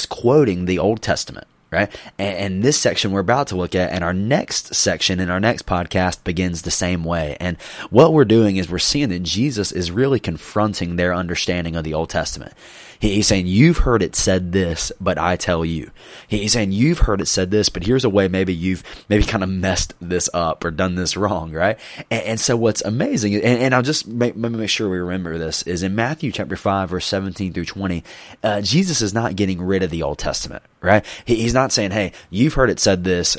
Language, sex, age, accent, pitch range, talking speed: English, male, 20-39, American, 90-110 Hz, 225 wpm